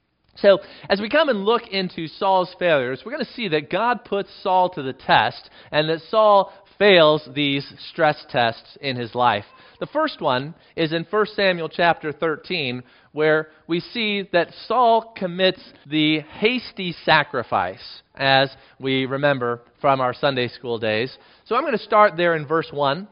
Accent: American